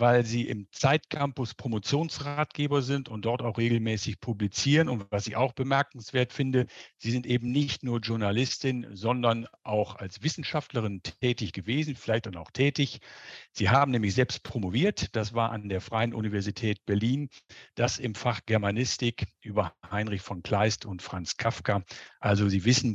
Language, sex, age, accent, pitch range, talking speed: German, male, 50-69, German, 105-130 Hz, 155 wpm